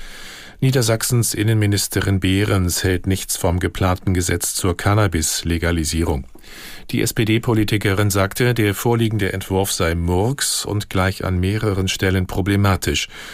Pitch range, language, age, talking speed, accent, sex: 90-110 Hz, German, 50-69, 110 wpm, German, male